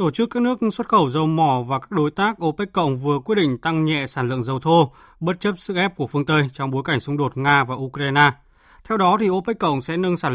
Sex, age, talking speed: male, 20-39, 255 wpm